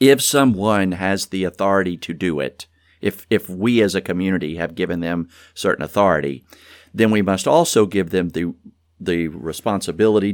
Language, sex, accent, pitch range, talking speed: English, male, American, 85-100 Hz, 165 wpm